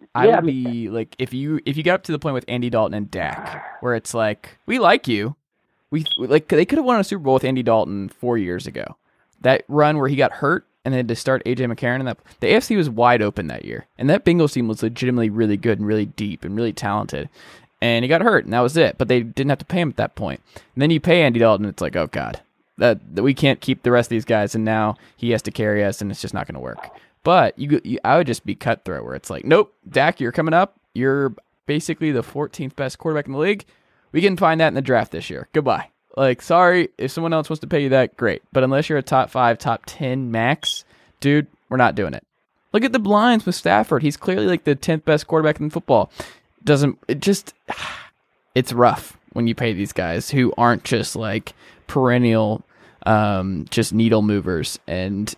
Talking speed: 240 wpm